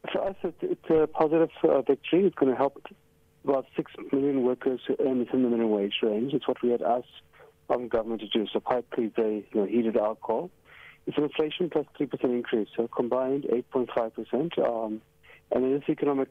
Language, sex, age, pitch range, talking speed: English, male, 40-59, 115-140 Hz, 185 wpm